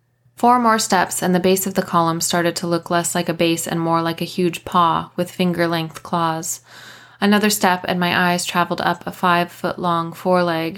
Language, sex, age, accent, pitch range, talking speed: English, female, 20-39, American, 165-185 Hz, 195 wpm